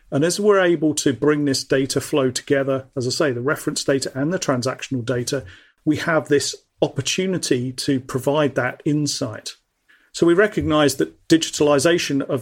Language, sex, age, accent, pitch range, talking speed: English, male, 40-59, British, 135-160 Hz, 165 wpm